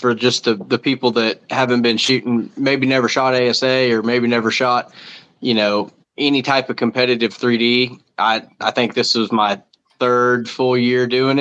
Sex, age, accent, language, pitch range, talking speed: male, 20-39, American, English, 115-135 Hz, 180 wpm